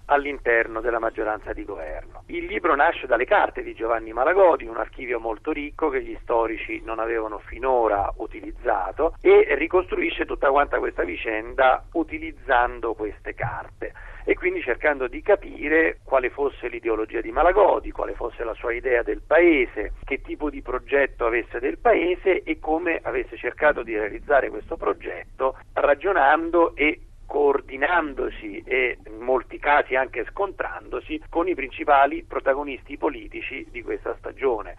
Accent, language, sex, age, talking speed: native, Italian, male, 50-69, 140 wpm